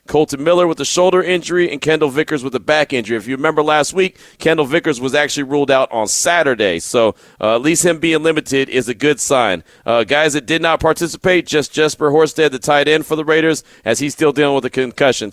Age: 40-59